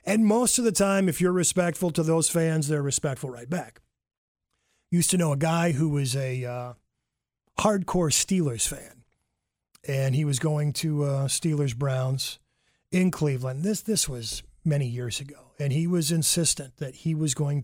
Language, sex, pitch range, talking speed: English, male, 140-180 Hz, 170 wpm